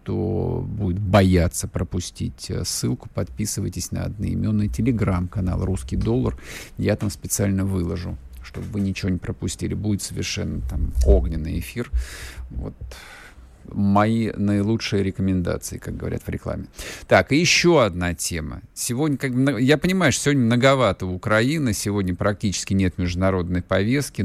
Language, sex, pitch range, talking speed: Russian, male, 95-145 Hz, 125 wpm